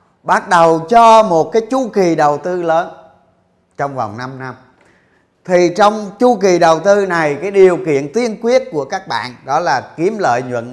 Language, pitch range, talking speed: Vietnamese, 120-175 Hz, 190 wpm